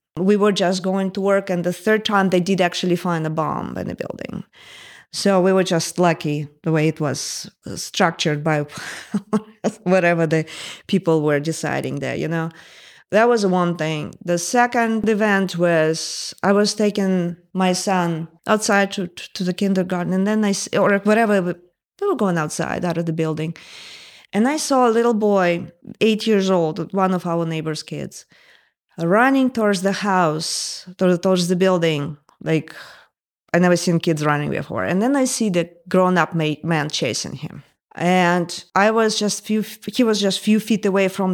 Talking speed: 175 wpm